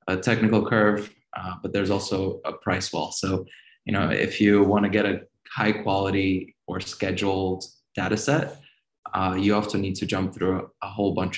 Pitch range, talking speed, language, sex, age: 95-105 Hz, 190 wpm, English, male, 20-39